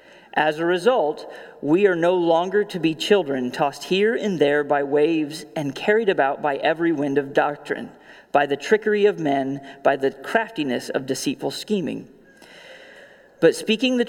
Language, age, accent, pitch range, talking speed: English, 40-59, American, 145-195 Hz, 160 wpm